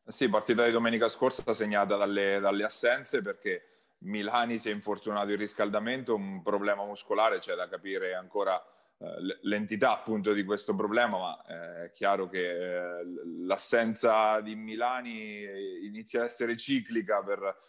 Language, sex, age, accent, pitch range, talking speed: Italian, male, 30-49, native, 100-120 Hz, 150 wpm